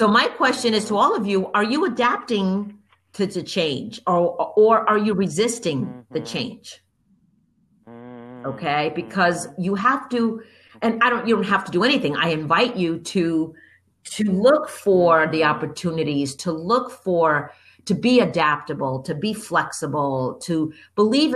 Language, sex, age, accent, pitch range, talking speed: English, female, 50-69, American, 155-215 Hz, 155 wpm